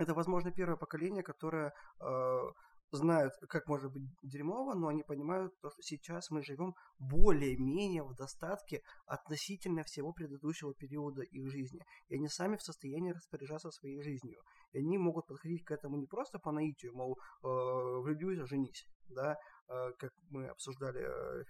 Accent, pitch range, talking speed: native, 135-165 Hz, 155 wpm